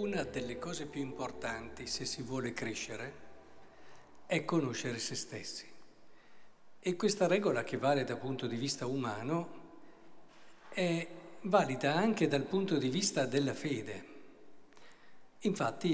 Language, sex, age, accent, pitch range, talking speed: Italian, male, 50-69, native, 130-195 Hz, 125 wpm